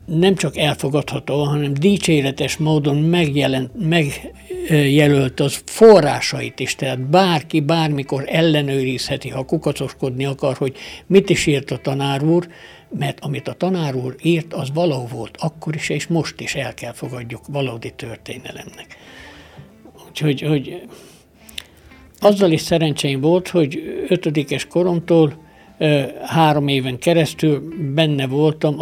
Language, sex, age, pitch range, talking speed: Hungarian, male, 60-79, 135-165 Hz, 120 wpm